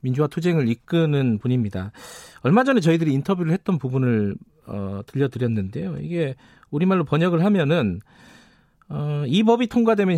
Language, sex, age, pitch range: Korean, male, 40-59, 125-185 Hz